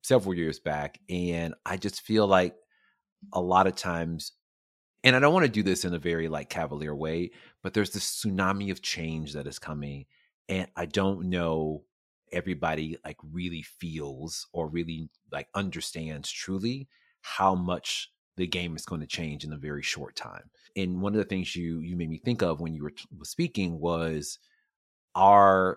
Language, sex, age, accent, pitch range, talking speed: English, male, 30-49, American, 80-105 Hz, 180 wpm